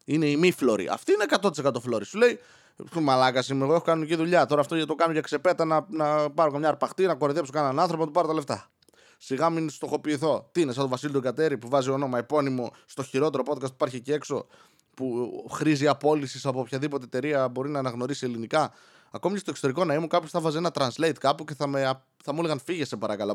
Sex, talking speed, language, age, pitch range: male, 215 wpm, Greek, 20-39, 120-155 Hz